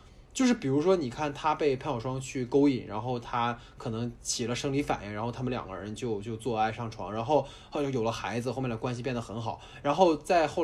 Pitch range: 115-170 Hz